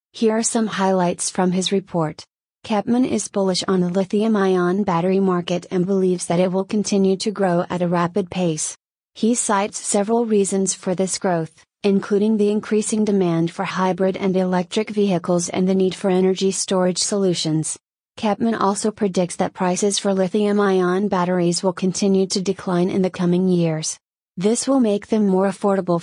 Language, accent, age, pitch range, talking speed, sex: English, American, 30-49, 180-205 Hz, 165 wpm, female